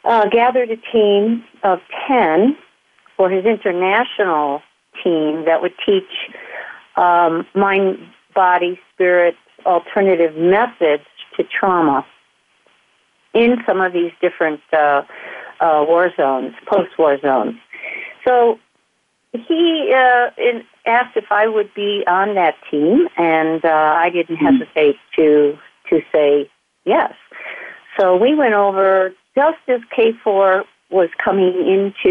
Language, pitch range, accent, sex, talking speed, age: English, 155-225 Hz, American, female, 115 wpm, 50-69